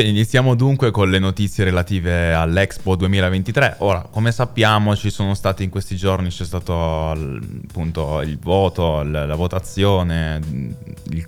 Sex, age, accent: male, 20-39, native